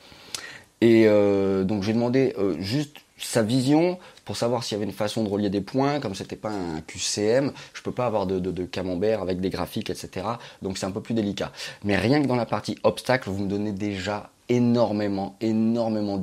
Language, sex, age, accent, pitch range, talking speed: French, male, 20-39, French, 95-115 Hz, 205 wpm